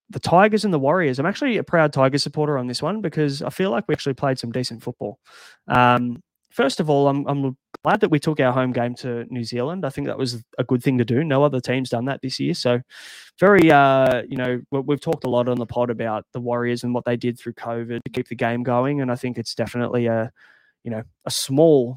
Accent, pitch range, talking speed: Australian, 120-145 Hz, 250 wpm